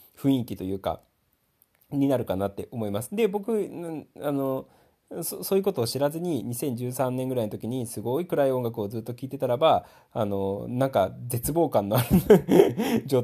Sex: male